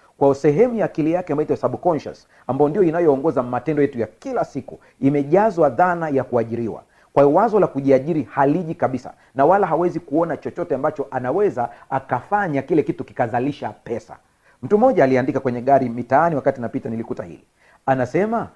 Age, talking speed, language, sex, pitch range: 40-59, 160 wpm, Swahili, male, 125-160 Hz